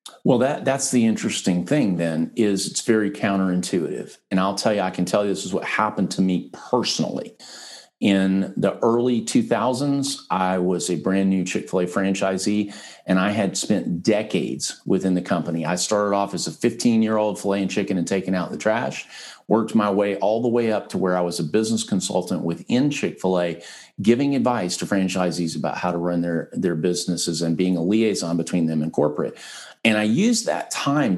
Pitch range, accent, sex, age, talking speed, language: 90-110 Hz, American, male, 50-69, 190 wpm, English